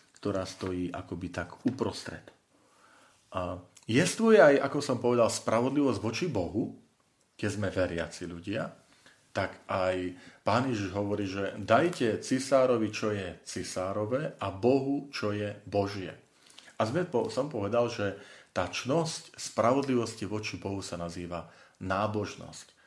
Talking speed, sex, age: 125 wpm, male, 40-59